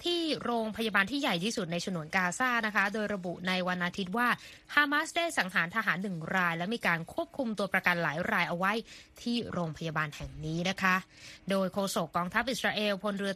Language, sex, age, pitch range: Thai, female, 20-39, 175-210 Hz